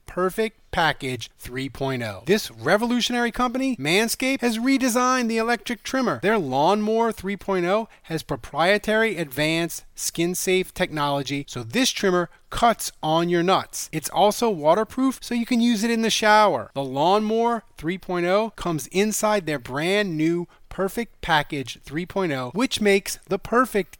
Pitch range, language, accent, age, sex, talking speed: 145-215 Hz, English, American, 30-49, male, 135 wpm